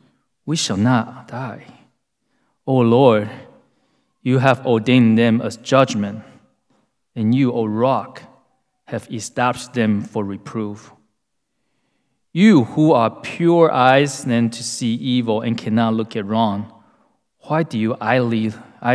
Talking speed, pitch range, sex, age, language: 125 wpm, 110-130 Hz, male, 20-39, English